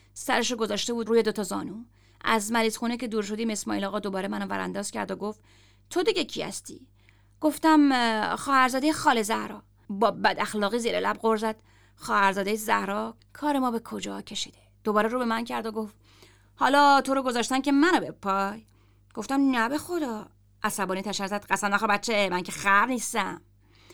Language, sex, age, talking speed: Persian, female, 30-49, 180 wpm